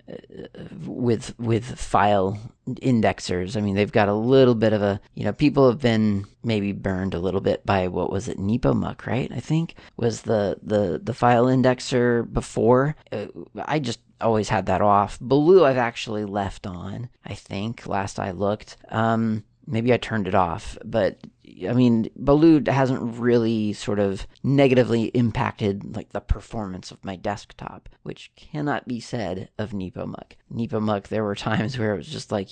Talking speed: 170 wpm